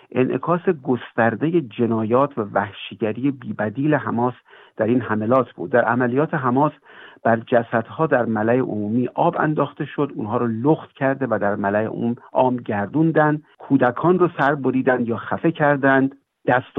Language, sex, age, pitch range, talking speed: Persian, male, 50-69, 115-150 Hz, 140 wpm